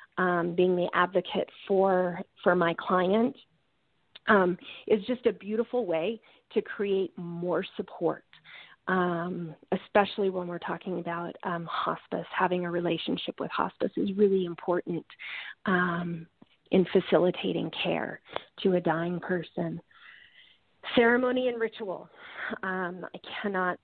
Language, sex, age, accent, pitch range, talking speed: English, female, 40-59, American, 180-215 Hz, 120 wpm